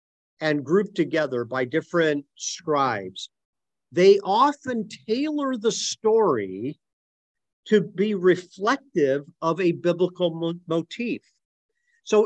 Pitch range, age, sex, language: 150-215 Hz, 50-69, male, English